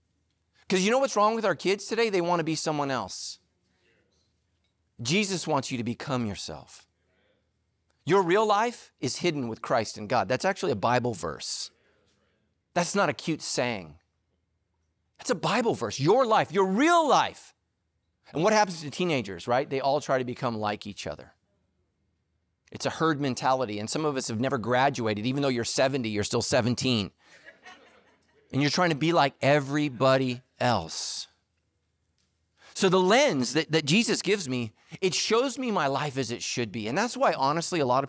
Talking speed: 180 wpm